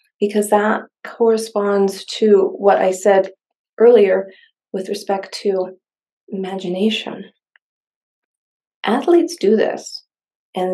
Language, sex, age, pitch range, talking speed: English, female, 30-49, 190-240 Hz, 90 wpm